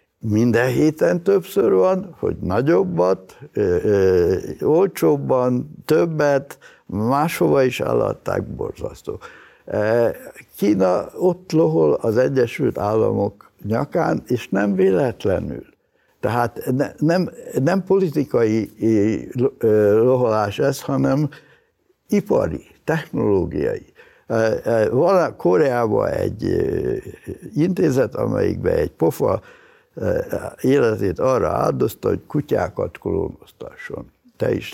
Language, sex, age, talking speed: Hungarian, male, 70-89, 85 wpm